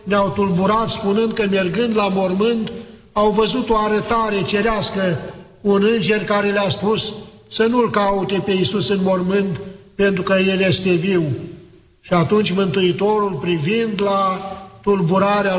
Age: 50-69